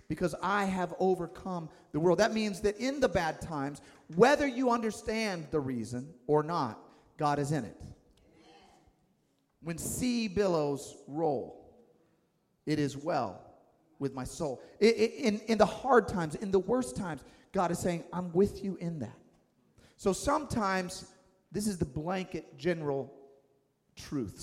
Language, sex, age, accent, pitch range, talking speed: English, male, 40-59, American, 145-205 Hz, 145 wpm